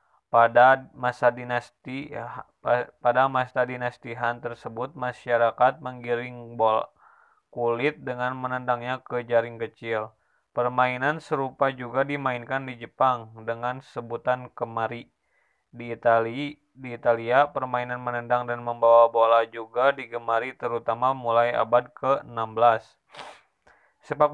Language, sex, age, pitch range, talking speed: Indonesian, male, 20-39, 120-135 Hz, 105 wpm